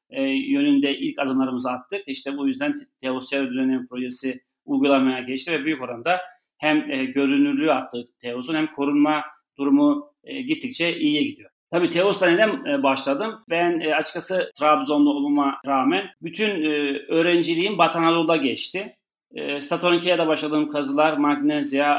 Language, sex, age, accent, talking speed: Turkish, male, 40-59, native, 135 wpm